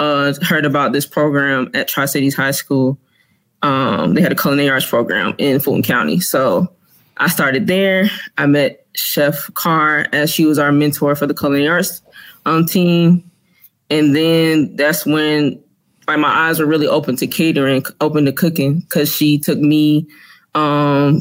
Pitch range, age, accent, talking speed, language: 145-170 Hz, 20-39, American, 165 wpm, English